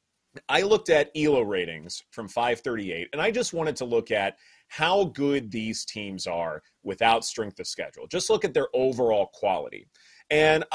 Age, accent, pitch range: 30-49, American, 115-160 Hz